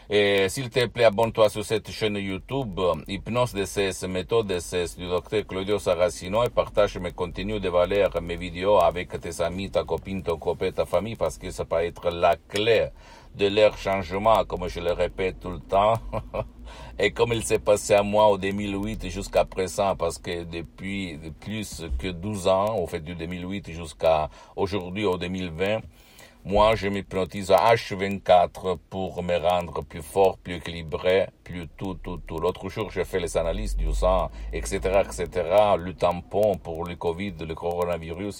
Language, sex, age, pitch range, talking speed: Italian, male, 60-79, 90-105 Hz, 175 wpm